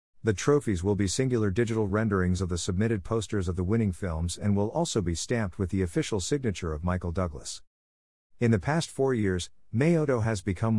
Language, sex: English, male